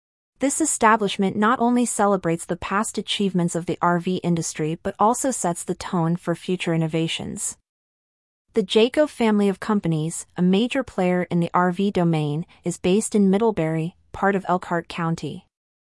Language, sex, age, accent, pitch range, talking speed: English, female, 30-49, American, 170-210 Hz, 150 wpm